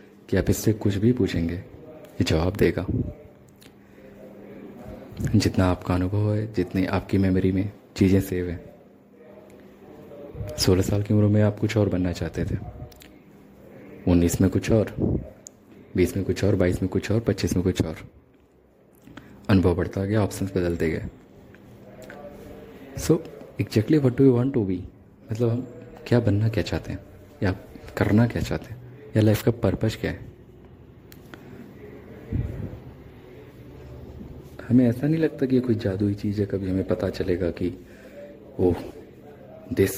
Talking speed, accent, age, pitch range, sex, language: 140 wpm, native, 20-39, 95-115 Hz, male, Hindi